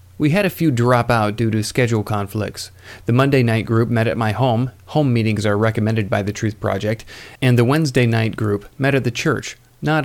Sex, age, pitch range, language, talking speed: male, 40-59, 110-135 Hz, English, 215 wpm